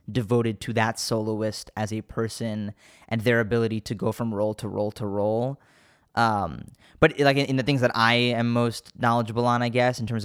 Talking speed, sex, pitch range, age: 205 wpm, male, 110-135 Hz, 10-29